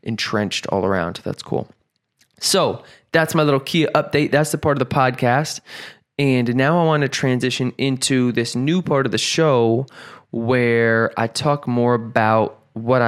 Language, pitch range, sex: English, 110-135 Hz, male